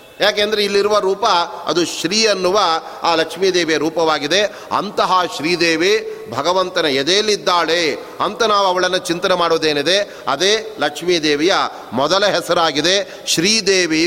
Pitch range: 170-210 Hz